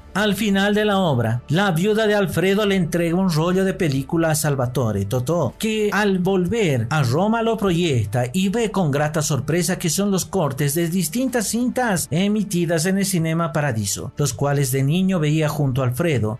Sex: male